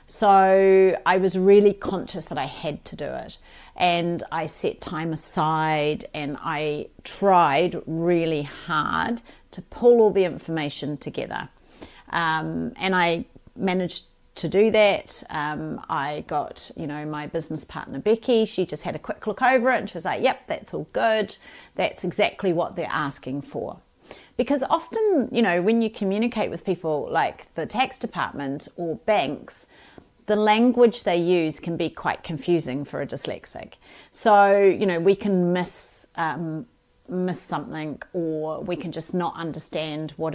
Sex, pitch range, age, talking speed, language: female, 155-210 Hz, 40-59, 160 wpm, English